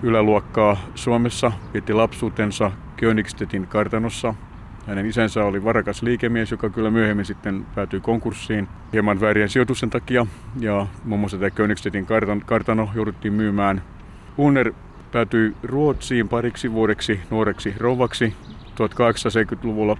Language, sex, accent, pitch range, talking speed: Finnish, male, native, 100-115 Hz, 115 wpm